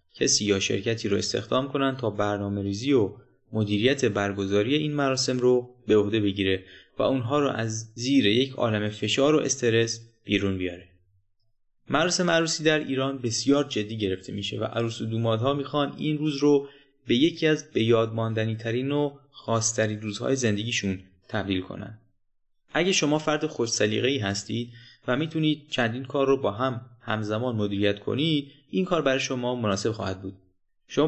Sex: male